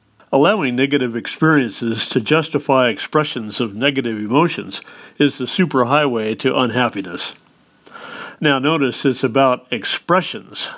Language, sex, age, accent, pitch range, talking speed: English, male, 50-69, American, 120-145 Hz, 105 wpm